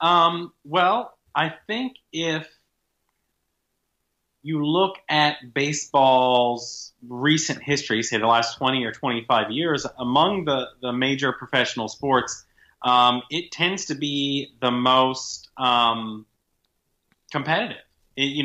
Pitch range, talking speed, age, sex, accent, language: 110-145 Hz, 115 wpm, 30-49, male, American, English